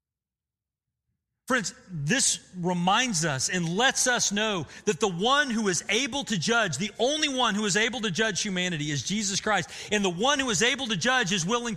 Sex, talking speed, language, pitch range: male, 195 wpm, English, 140-210 Hz